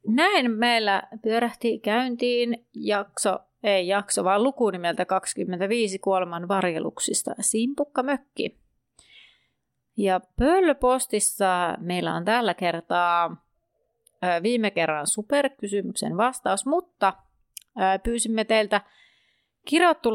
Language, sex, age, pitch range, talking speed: Finnish, female, 30-49, 185-235 Hz, 85 wpm